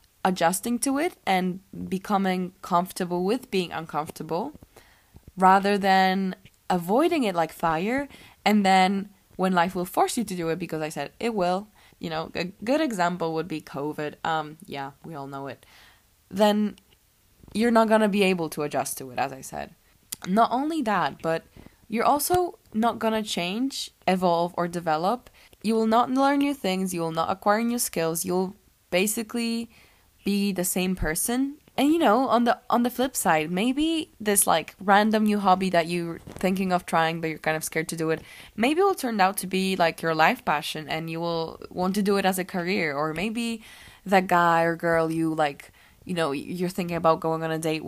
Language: English